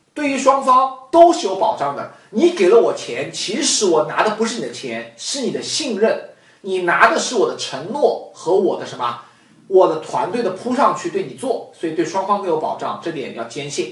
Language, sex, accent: Chinese, male, native